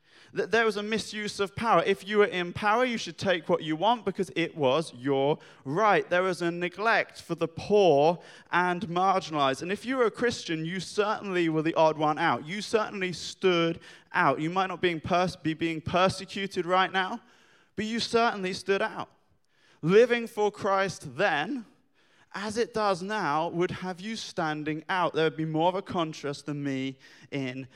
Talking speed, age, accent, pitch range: 180 wpm, 20-39, British, 150-200 Hz